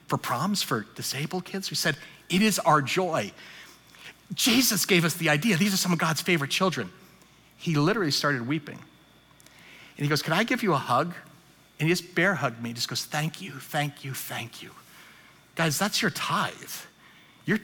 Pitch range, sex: 155-205 Hz, male